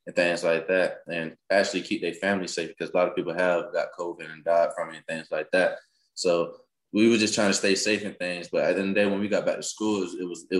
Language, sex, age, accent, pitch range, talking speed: English, male, 20-39, American, 90-115 Hz, 295 wpm